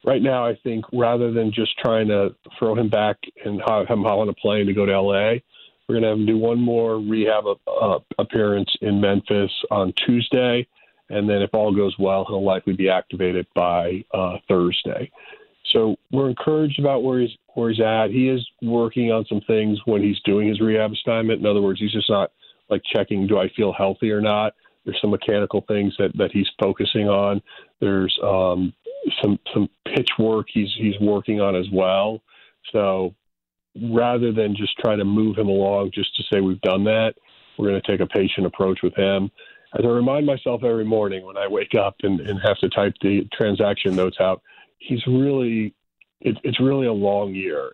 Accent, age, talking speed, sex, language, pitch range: American, 40-59, 200 wpm, male, English, 100-115 Hz